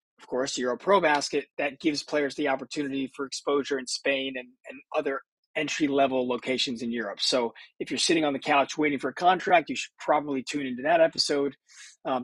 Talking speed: 195 wpm